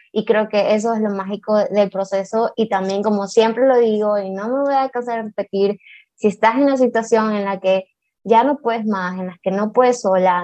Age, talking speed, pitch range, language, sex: 20-39, 235 wpm, 205-235 Hz, Spanish, female